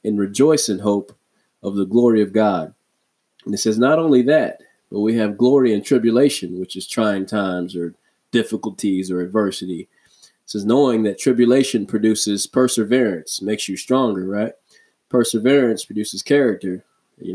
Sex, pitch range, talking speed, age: male, 100-120 Hz, 150 wpm, 20-39